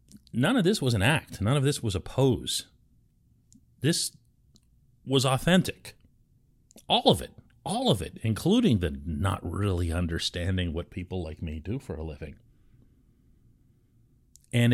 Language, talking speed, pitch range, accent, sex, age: English, 145 wpm, 100-135 Hz, American, male, 40-59